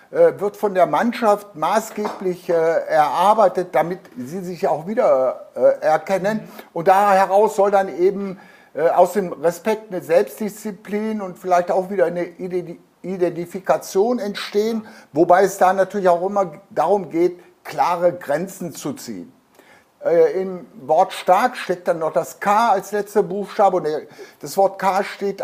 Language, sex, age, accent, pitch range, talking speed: German, male, 60-79, German, 185-210 Hz, 135 wpm